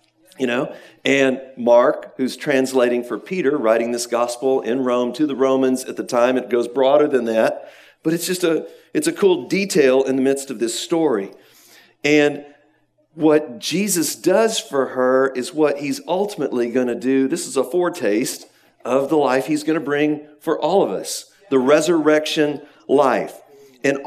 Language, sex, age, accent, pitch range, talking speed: English, male, 50-69, American, 135-190 Hz, 175 wpm